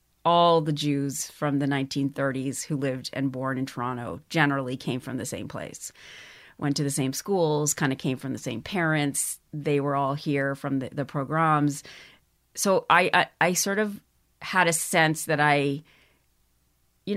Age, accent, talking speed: 30-49, American, 175 wpm